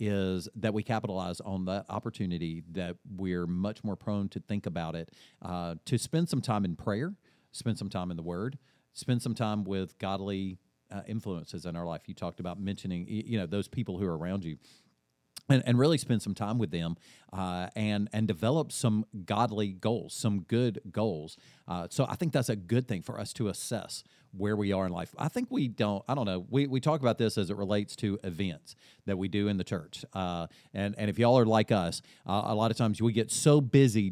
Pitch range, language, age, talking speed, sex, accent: 95-120 Hz, English, 40-59, 220 wpm, male, American